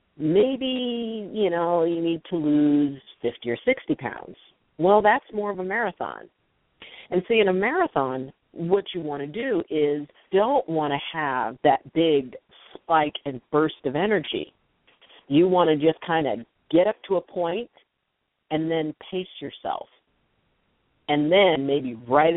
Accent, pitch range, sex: American, 140-190 Hz, female